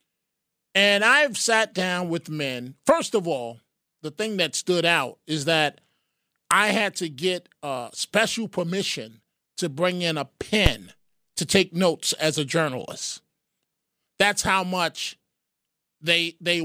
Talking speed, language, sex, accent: 140 wpm, English, male, American